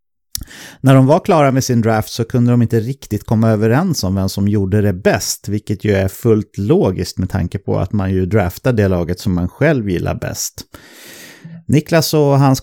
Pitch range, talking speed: 100-130 Hz, 200 wpm